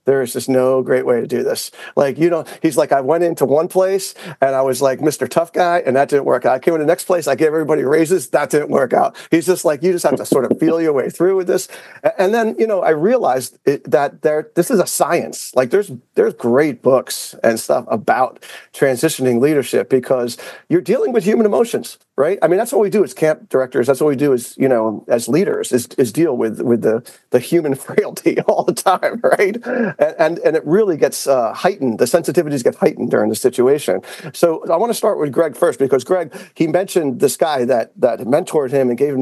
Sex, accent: male, American